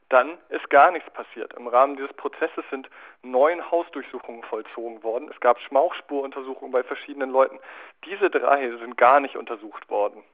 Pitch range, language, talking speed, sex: 120-145 Hz, German, 155 wpm, male